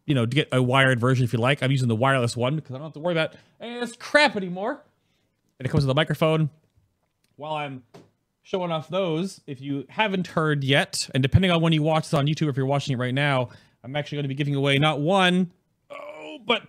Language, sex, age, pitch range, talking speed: English, male, 30-49, 125-170 Hz, 240 wpm